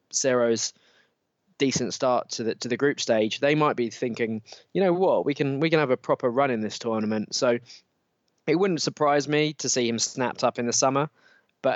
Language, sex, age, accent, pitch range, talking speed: English, male, 20-39, British, 110-130 Hz, 210 wpm